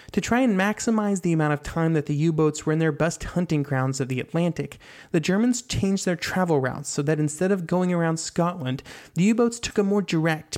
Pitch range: 145-180 Hz